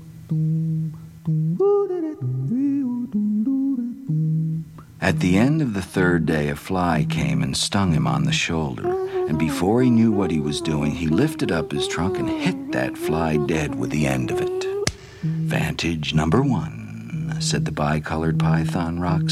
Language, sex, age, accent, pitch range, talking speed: English, male, 60-79, American, 110-180 Hz, 145 wpm